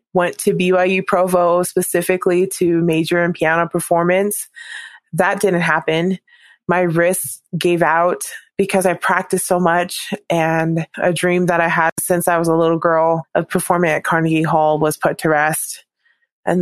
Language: English